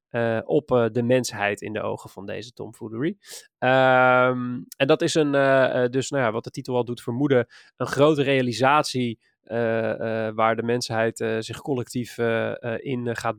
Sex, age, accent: male, 20-39, Dutch